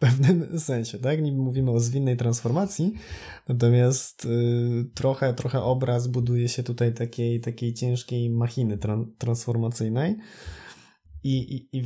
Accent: native